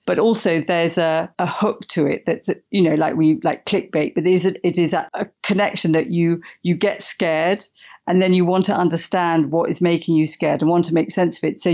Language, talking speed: English, 250 wpm